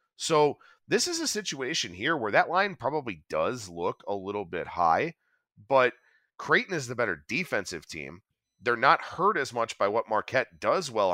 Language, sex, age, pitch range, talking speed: English, male, 30-49, 100-160 Hz, 180 wpm